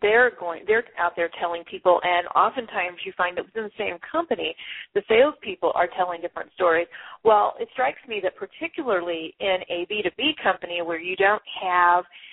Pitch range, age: 185-275 Hz, 40-59